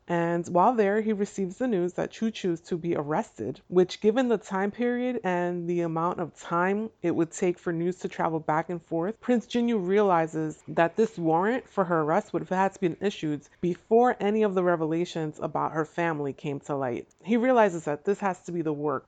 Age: 30-49